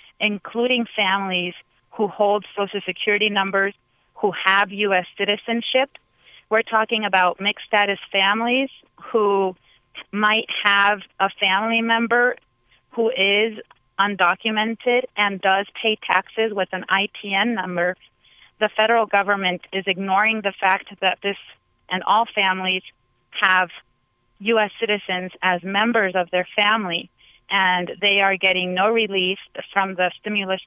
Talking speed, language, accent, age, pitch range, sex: 125 wpm, English, American, 30-49, 180-210 Hz, female